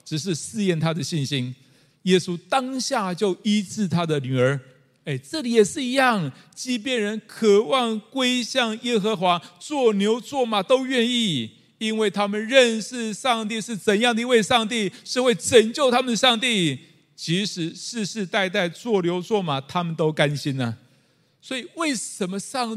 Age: 50-69